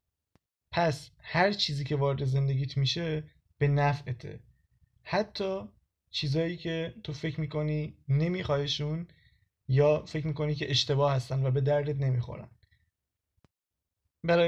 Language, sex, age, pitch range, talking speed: Persian, male, 20-39, 135-165 Hz, 110 wpm